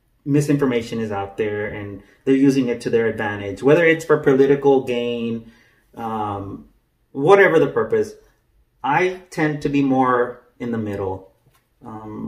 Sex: male